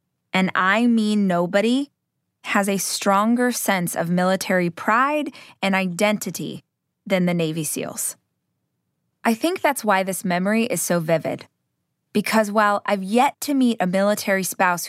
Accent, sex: American, female